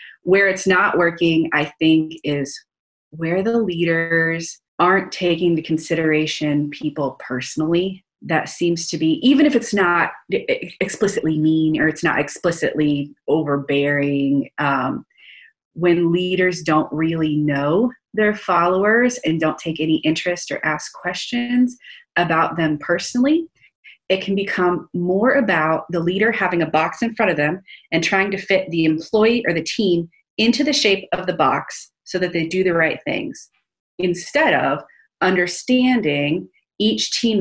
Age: 30-49